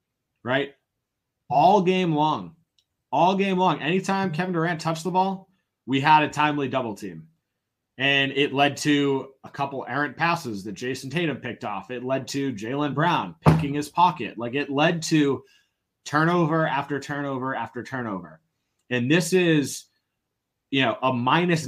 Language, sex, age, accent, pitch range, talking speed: English, male, 30-49, American, 130-170 Hz, 155 wpm